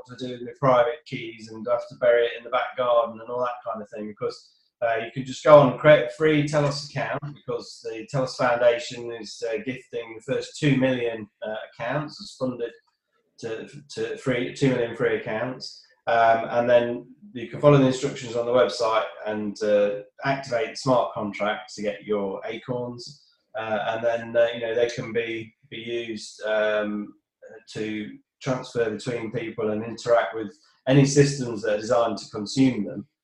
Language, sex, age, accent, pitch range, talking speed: English, male, 20-39, British, 115-145 Hz, 185 wpm